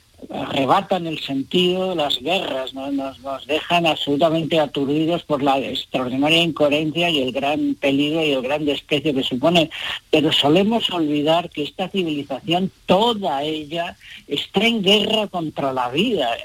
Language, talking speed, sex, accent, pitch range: Spanish, 145 wpm, female, Spanish, 140-180 Hz